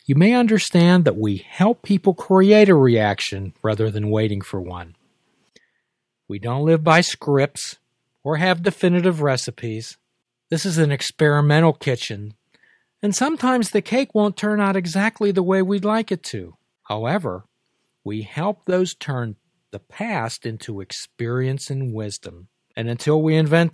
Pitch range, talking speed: 115-170 Hz, 145 wpm